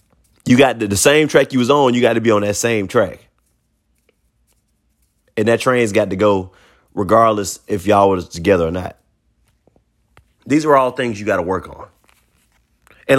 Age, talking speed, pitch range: 30-49, 180 wpm, 105-140 Hz